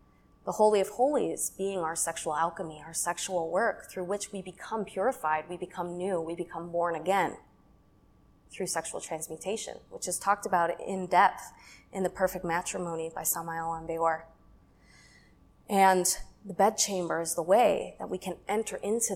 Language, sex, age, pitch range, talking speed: English, female, 20-39, 175-220 Hz, 160 wpm